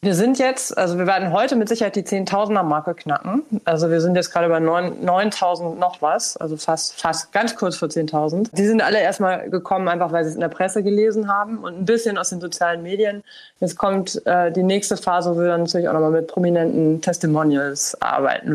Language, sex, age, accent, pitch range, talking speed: German, female, 20-39, German, 165-195 Hz, 215 wpm